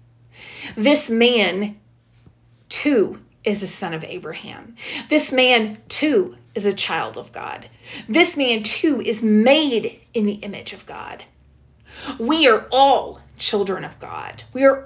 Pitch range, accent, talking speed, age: 210-275 Hz, American, 135 wpm, 30-49